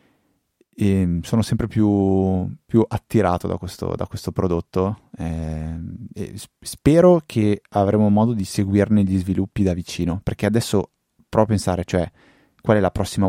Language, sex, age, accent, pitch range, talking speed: Italian, male, 20-39, native, 90-100 Hz, 150 wpm